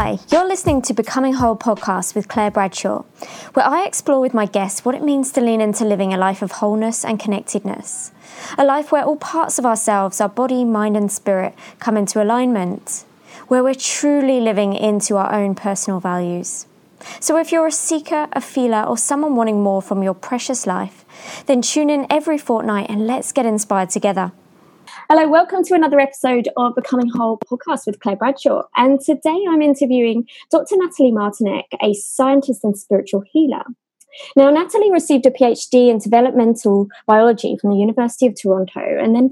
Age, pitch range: 20-39, 205-275 Hz